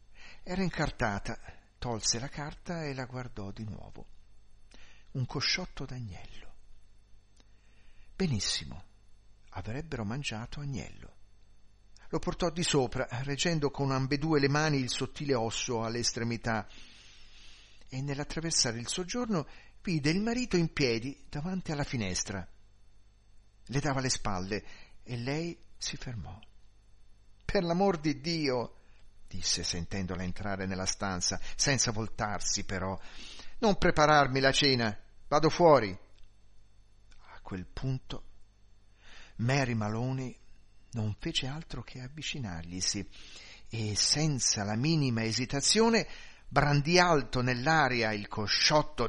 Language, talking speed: Italian, 110 wpm